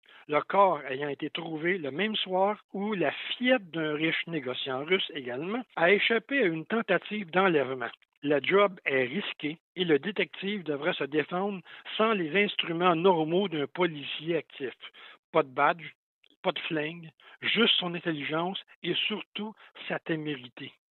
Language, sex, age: French, male, 60-79